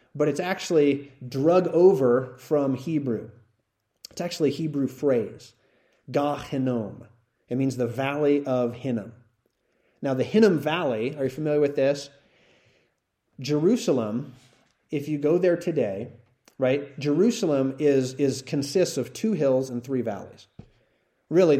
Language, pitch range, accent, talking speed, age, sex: English, 120-150 Hz, American, 130 wpm, 30-49, male